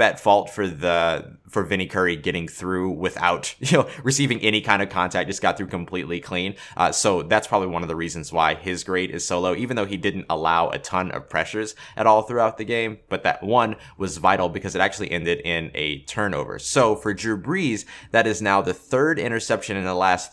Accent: American